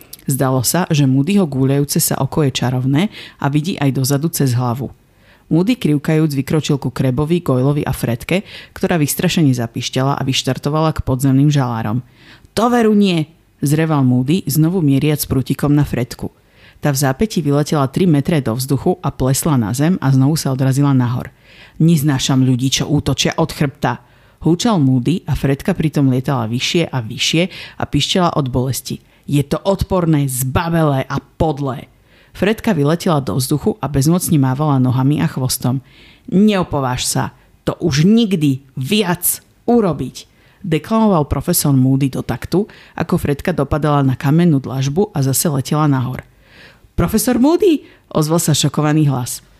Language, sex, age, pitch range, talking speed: Slovak, female, 50-69, 130-165 Hz, 145 wpm